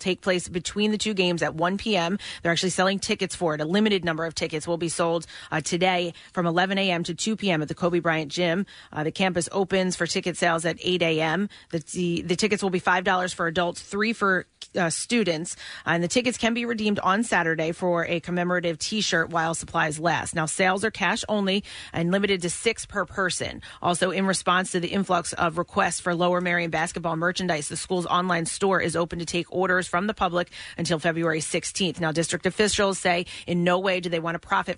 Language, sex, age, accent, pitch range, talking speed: English, female, 30-49, American, 170-190 Hz, 210 wpm